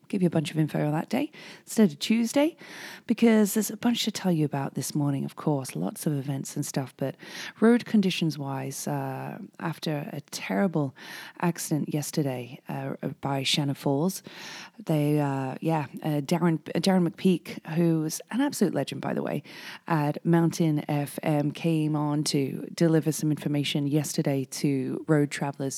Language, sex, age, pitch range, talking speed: English, female, 30-49, 145-185 Hz, 160 wpm